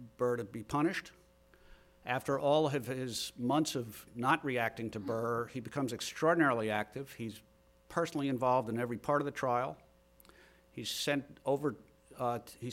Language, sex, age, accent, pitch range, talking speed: English, male, 50-69, American, 115-155 Hz, 150 wpm